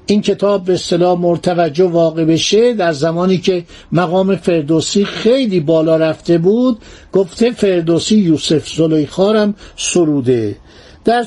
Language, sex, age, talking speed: Persian, male, 60-79, 125 wpm